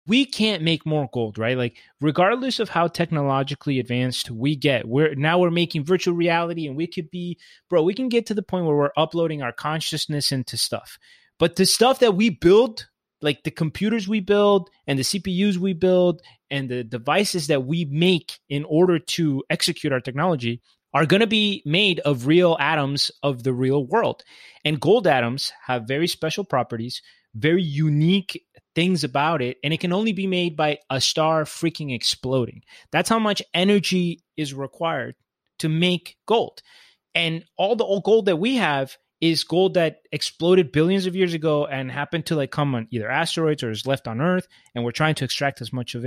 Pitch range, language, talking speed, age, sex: 140-180 Hz, English, 190 wpm, 30-49, male